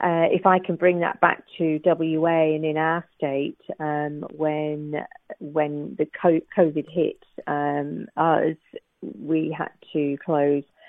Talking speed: 140 wpm